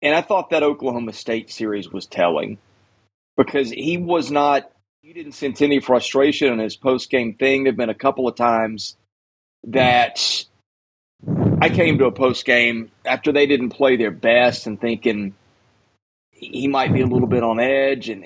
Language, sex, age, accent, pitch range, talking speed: English, male, 30-49, American, 110-140 Hz, 170 wpm